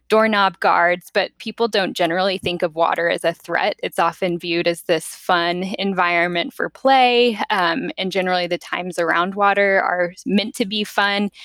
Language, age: English, 10-29